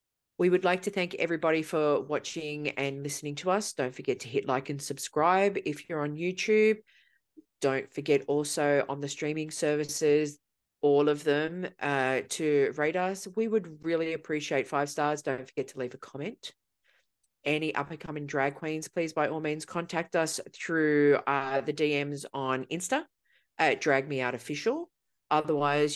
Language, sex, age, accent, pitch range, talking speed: English, female, 40-59, Australian, 145-205 Hz, 160 wpm